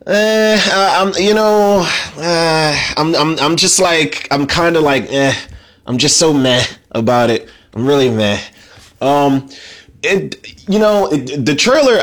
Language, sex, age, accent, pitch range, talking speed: English, male, 20-39, American, 100-140 Hz, 155 wpm